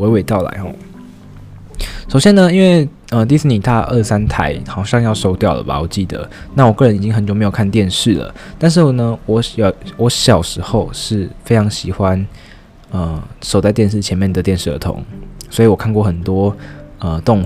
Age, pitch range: 20-39, 90-120 Hz